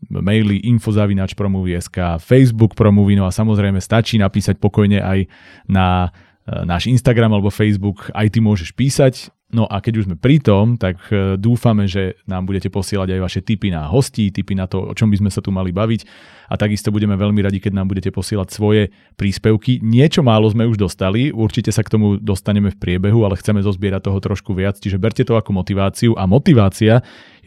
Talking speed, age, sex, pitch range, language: 190 wpm, 30-49, male, 95-110 Hz, Slovak